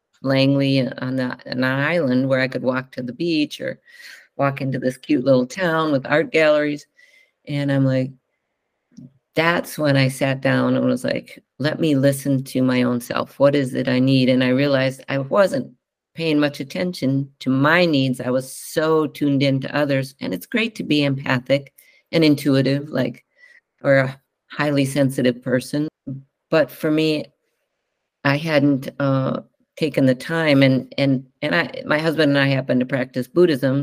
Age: 50-69